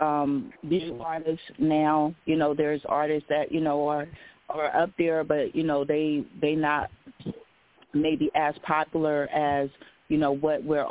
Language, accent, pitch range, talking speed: English, American, 150-160 Hz, 160 wpm